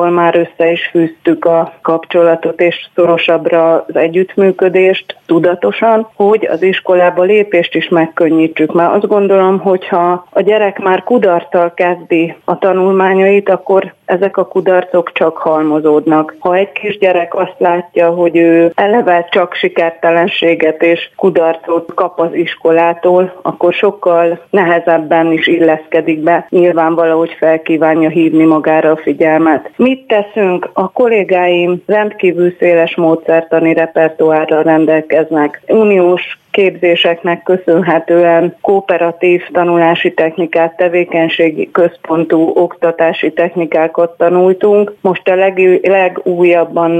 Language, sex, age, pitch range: Hungarian, female, 30-49, 165-185 Hz